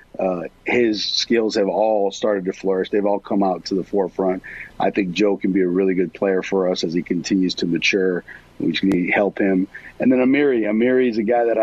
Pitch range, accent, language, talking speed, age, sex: 95-110 Hz, American, English, 220 wpm, 50-69, male